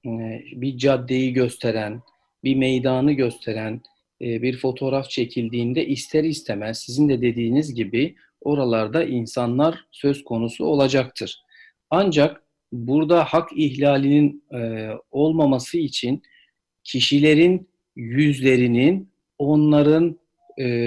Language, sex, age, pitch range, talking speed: Turkish, male, 50-69, 115-145 Hz, 85 wpm